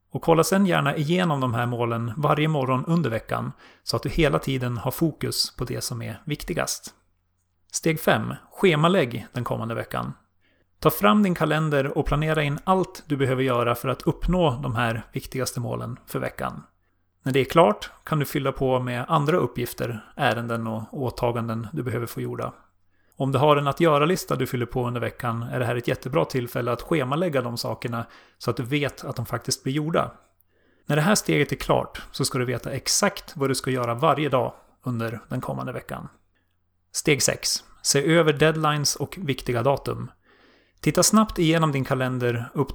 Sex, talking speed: male, 185 wpm